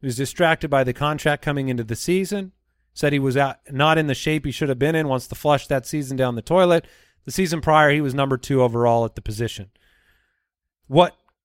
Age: 30-49